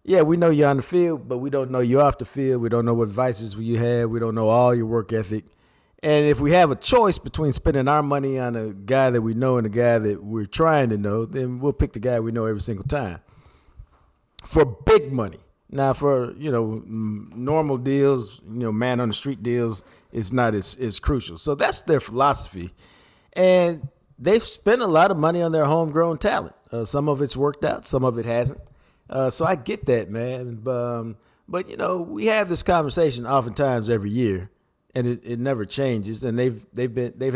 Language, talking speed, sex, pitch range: English, 220 wpm, male, 115-145 Hz